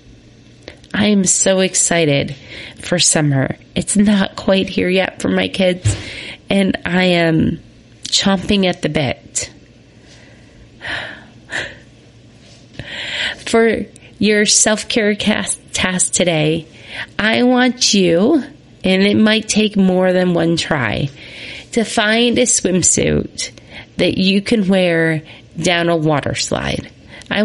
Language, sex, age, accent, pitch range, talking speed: English, female, 30-49, American, 160-215 Hz, 110 wpm